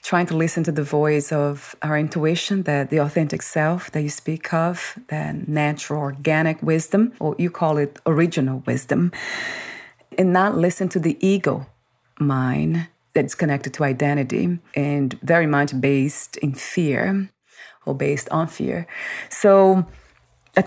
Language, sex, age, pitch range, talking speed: English, female, 30-49, 145-185 Hz, 145 wpm